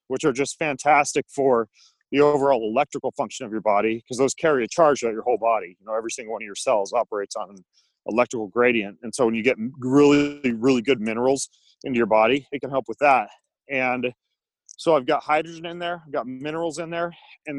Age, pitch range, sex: 30-49, 120-150 Hz, male